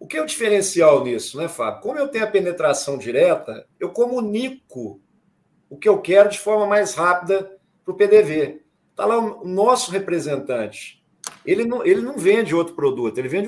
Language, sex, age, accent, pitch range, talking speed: Portuguese, male, 50-69, Brazilian, 180-220 Hz, 185 wpm